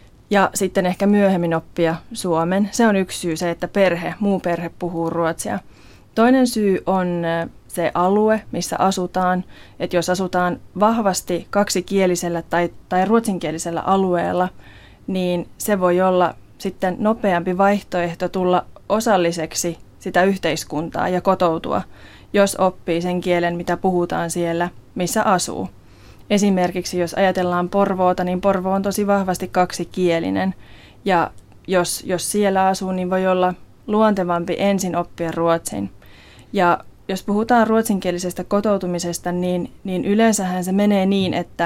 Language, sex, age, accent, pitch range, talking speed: Finnish, female, 20-39, native, 170-195 Hz, 125 wpm